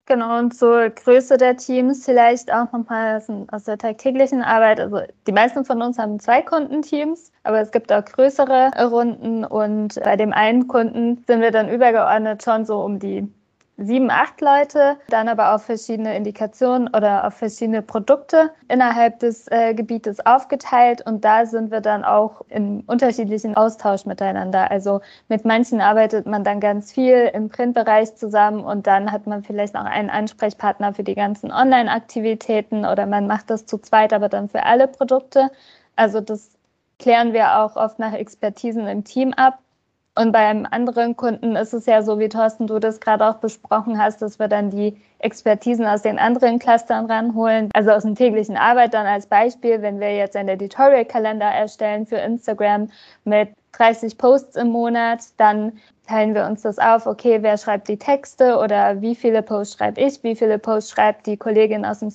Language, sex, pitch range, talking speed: German, female, 215-245 Hz, 180 wpm